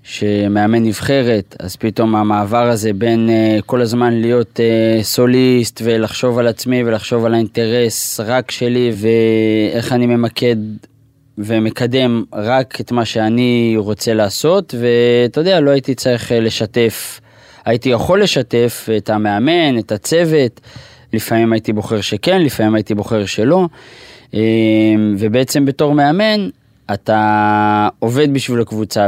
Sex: male